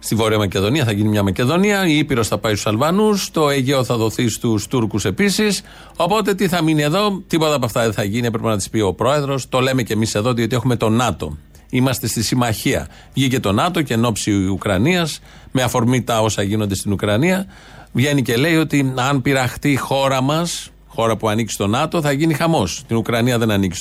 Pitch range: 110-150 Hz